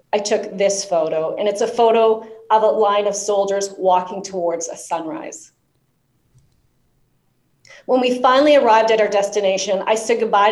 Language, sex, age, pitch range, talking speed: English, female, 40-59, 190-230 Hz, 155 wpm